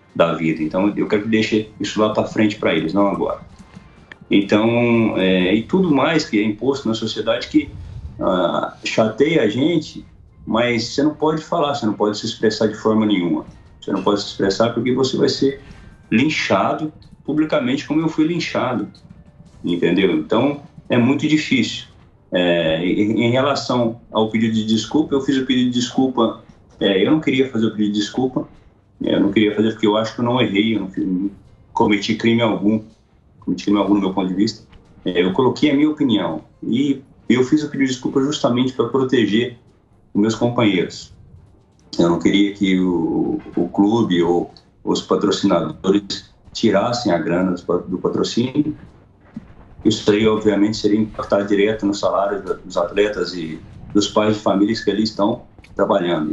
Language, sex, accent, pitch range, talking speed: Portuguese, male, Brazilian, 100-130 Hz, 170 wpm